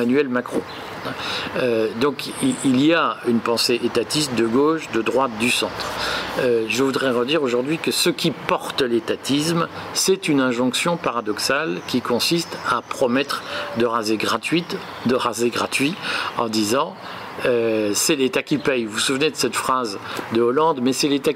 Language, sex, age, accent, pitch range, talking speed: French, male, 50-69, French, 120-150 Hz, 165 wpm